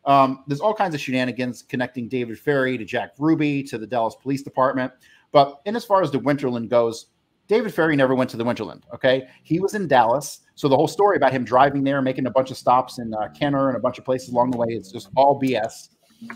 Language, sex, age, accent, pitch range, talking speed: English, male, 30-49, American, 125-150 Hz, 240 wpm